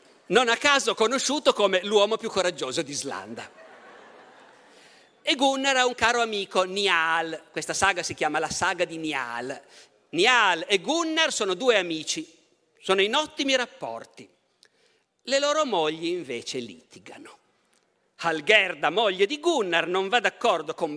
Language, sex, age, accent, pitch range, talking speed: Italian, male, 50-69, native, 170-270 Hz, 135 wpm